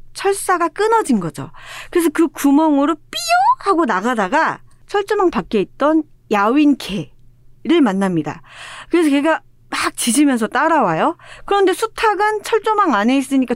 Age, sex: 40-59, female